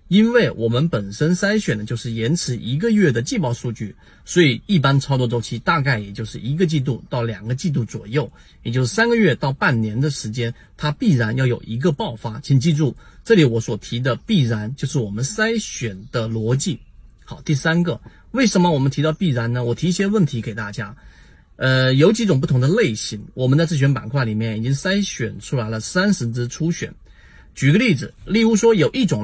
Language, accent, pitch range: Chinese, native, 120-175 Hz